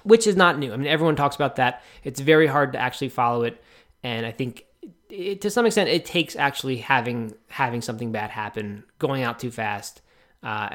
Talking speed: 205 wpm